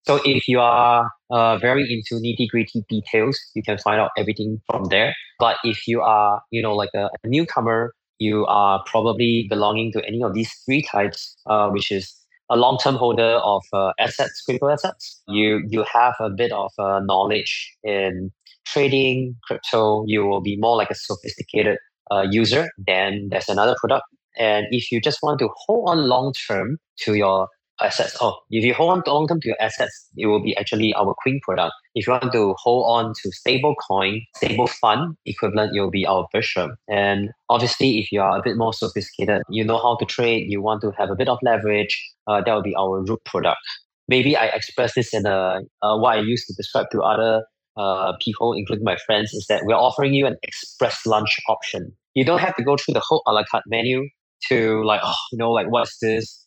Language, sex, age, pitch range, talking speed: English, male, 20-39, 105-120 Hz, 205 wpm